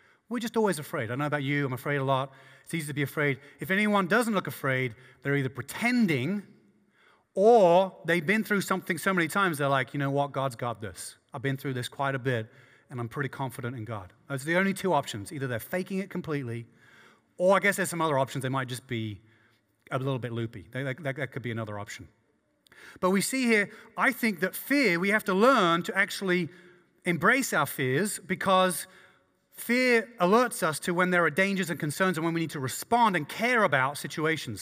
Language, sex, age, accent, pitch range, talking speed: English, male, 30-49, British, 130-185 Hz, 210 wpm